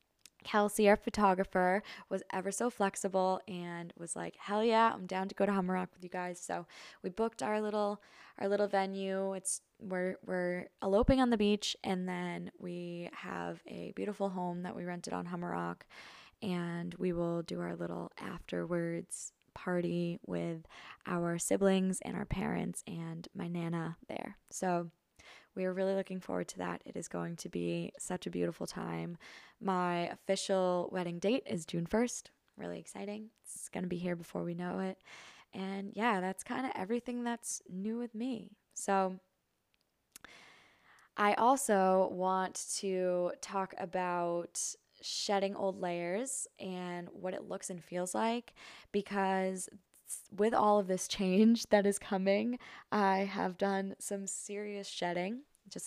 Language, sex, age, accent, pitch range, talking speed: English, female, 10-29, American, 175-200 Hz, 155 wpm